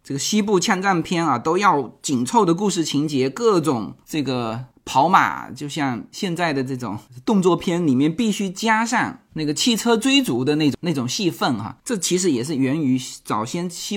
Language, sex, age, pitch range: Chinese, male, 20-39, 150-220 Hz